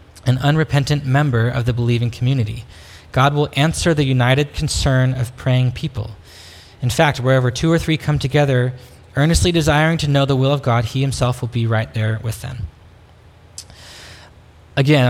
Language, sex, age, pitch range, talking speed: English, male, 20-39, 115-140 Hz, 165 wpm